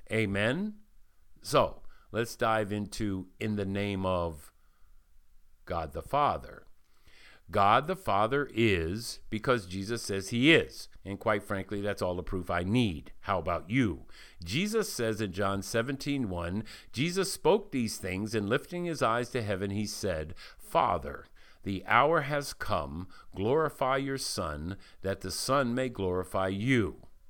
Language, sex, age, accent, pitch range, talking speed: English, male, 50-69, American, 95-120 Hz, 140 wpm